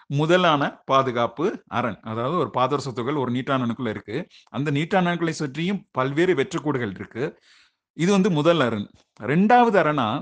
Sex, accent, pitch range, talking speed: male, native, 125-175 Hz, 125 wpm